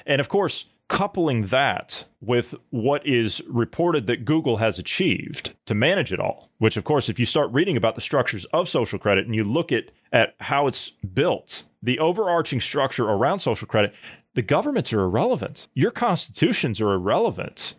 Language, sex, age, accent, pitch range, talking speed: English, male, 30-49, American, 115-155 Hz, 175 wpm